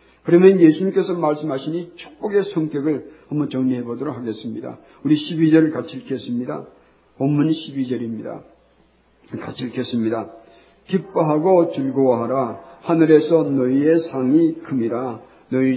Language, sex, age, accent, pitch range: Korean, male, 50-69, native, 130-175 Hz